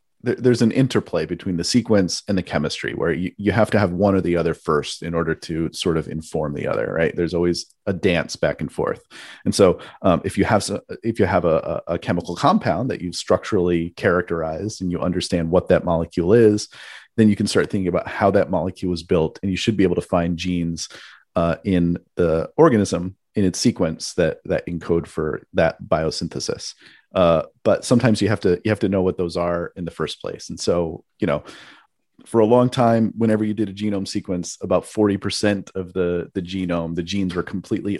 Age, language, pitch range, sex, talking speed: 30-49, English, 85-105 Hz, male, 215 wpm